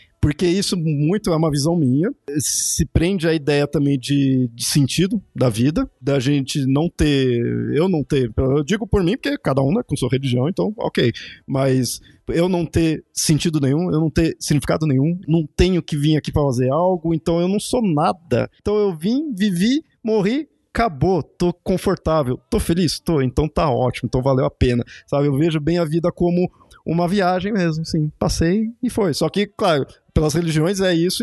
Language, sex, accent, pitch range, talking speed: Portuguese, male, Brazilian, 140-180 Hz, 195 wpm